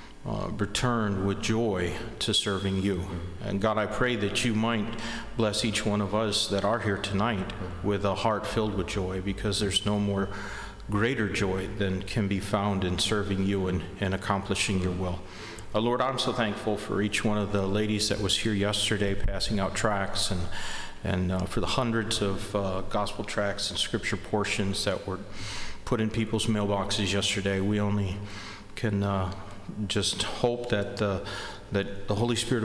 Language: English